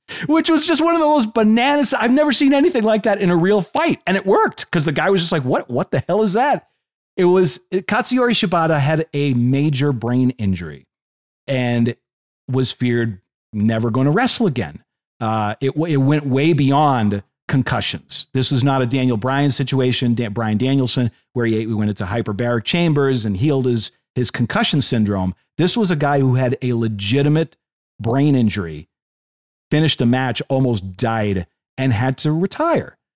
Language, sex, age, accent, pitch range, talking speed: English, male, 40-59, American, 120-180 Hz, 180 wpm